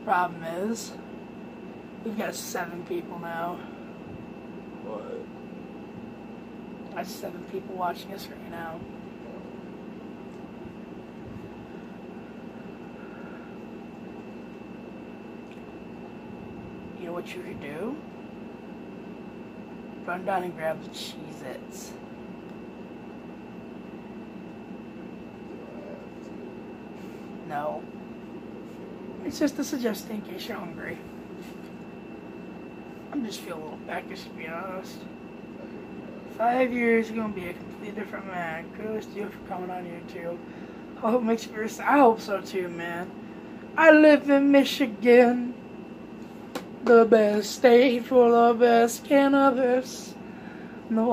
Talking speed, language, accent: 95 wpm, English, American